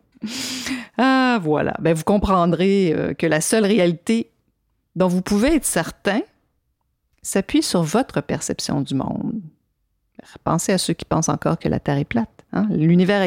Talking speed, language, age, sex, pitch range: 155 wpm, French, 50-69, female, 150-195 Hz